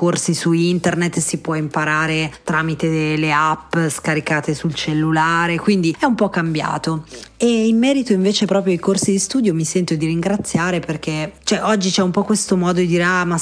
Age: 30-49